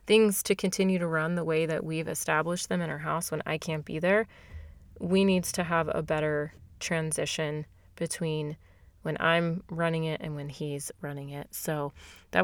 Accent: American